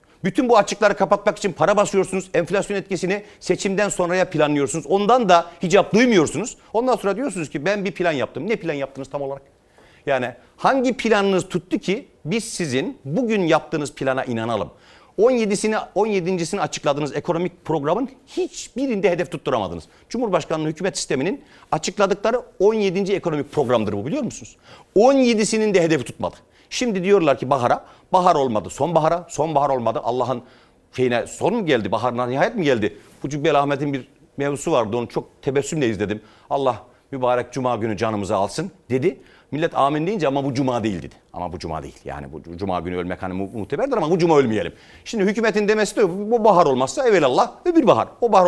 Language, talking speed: Turkish, 165 wpm